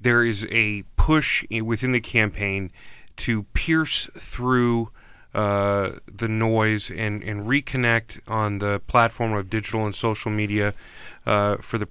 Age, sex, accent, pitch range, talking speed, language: 30-49, male, American, 105-120 Hz, 135 wpm, English